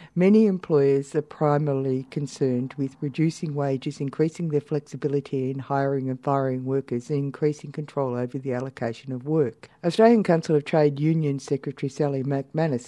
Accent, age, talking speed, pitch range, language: Australian, 60-79, 150 wpm, 135-160 Hz, English